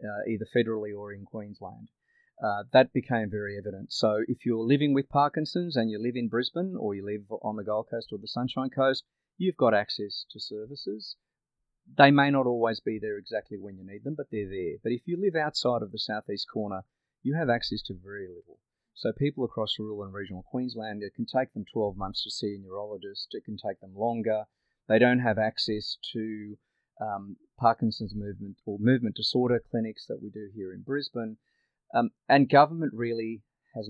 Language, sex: English, male